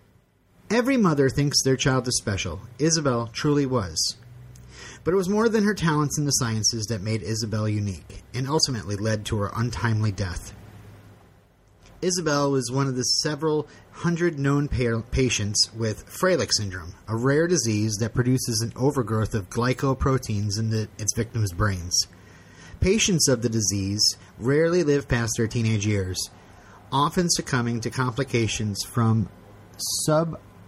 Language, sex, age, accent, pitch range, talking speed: English, male, 30-49, American, 105-145 Hz, 140 wpm